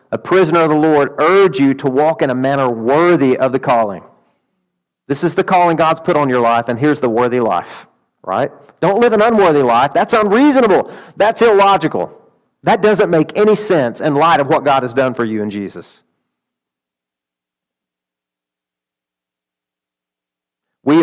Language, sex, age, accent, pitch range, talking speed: English, male, 40-59, American, 120-165 Hz, 165 wpm